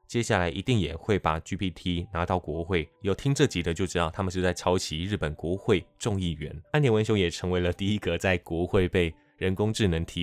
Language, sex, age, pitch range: Chinese, male, 20-39, 85-105 Hz